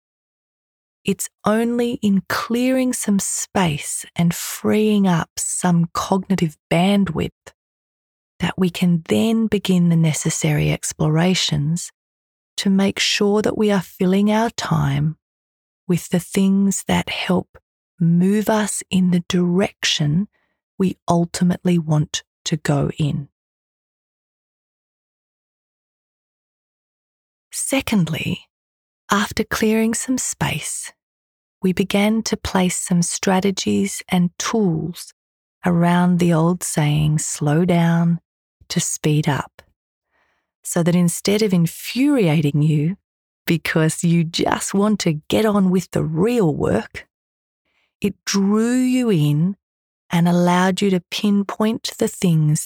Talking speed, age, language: 110 wpm, 30-49, English